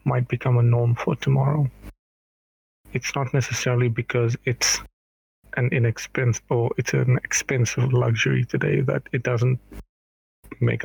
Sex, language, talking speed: male, English, 125 wpm